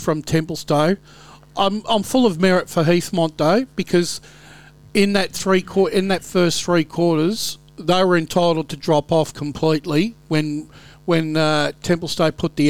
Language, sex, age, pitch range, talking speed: English, male, 50-69, 150-175 Hz, 155 wpm